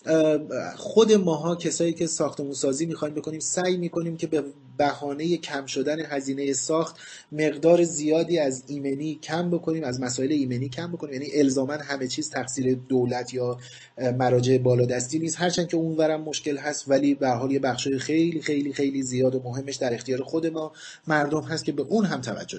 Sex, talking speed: male, 175 wpm